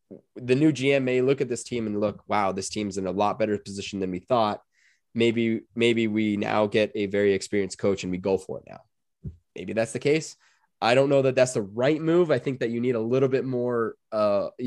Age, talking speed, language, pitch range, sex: 20-39, 235 wpm, English, 95-120 Hz, male